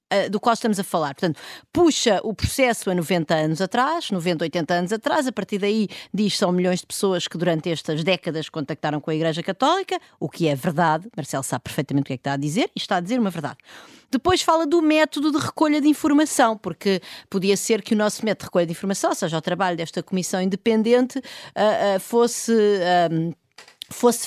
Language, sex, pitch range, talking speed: Portuguese, female, 185-295 Hz, 200 wpm